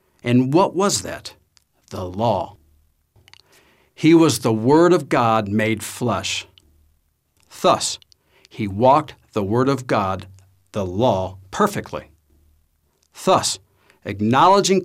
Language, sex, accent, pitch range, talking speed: English, male, American, 95-130 Hz, 105 wpm